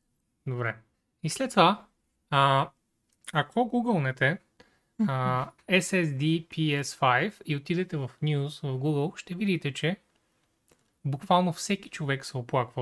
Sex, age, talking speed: male, 20-39, 110 wpm